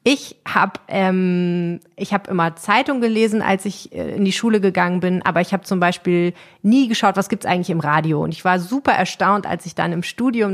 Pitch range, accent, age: 170-205 Hz, German, 30-49